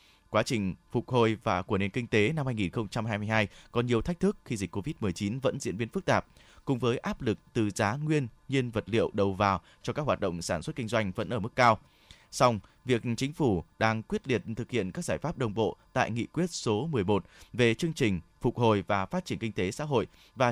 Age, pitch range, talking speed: 20-39, 105-135 Hz, 230 wpm